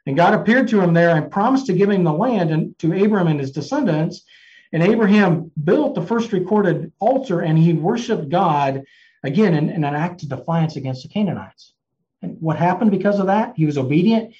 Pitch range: 160-210 Hz